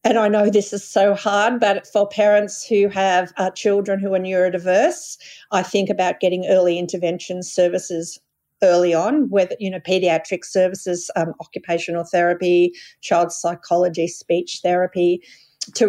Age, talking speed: 50-69, 145 wpm